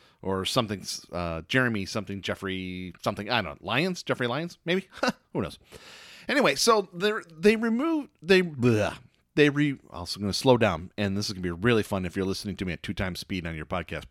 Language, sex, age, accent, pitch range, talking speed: English, male, 30-49, American, 100-150 Hz, 215 wpm